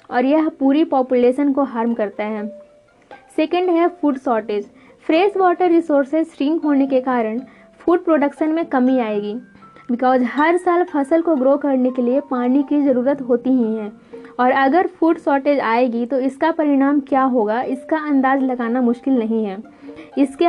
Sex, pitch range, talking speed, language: female, 245-295 Hz, 165 wpm, Hindi